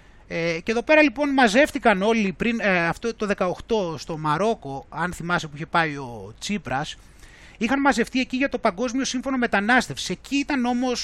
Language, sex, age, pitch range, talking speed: Greek, male, 30-49, 175-250 Hz, 175 wpm